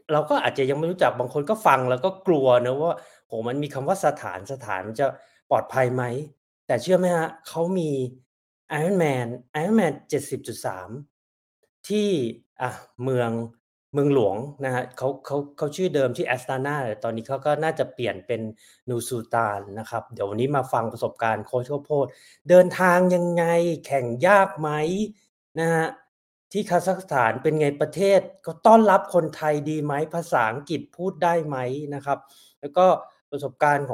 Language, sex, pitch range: Thai, male, 125-170 Hz